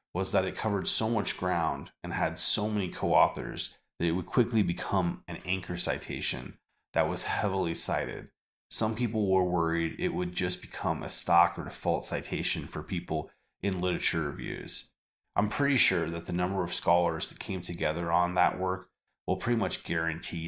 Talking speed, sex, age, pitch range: 175 wpm, male, 30-49, 85-105 Hz